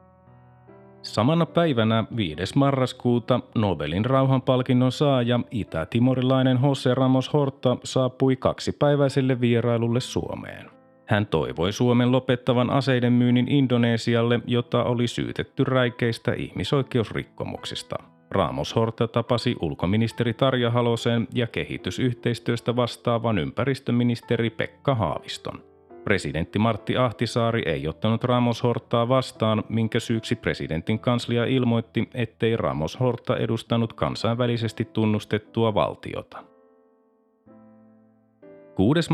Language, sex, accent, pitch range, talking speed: Finnish, male, native, 110-130 Hz, 90 wpm